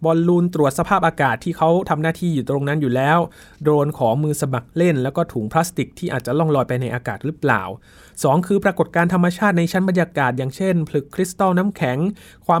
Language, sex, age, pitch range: Thai, male, 20-39, 125-160 Hz